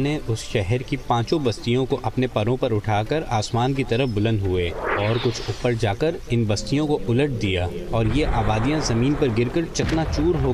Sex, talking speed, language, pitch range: male, 210 wpm, Urdu, 105-130 Hz